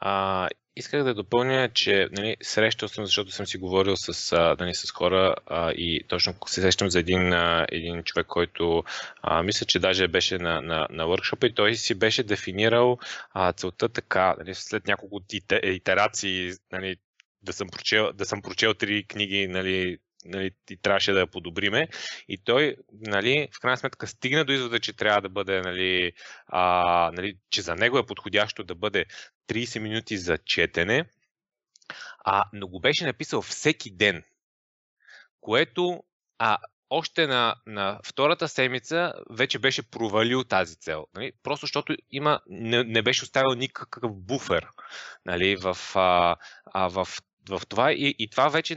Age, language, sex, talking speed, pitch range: 20-39, Bulgarian, male, 160 wpm, 95-130 Hz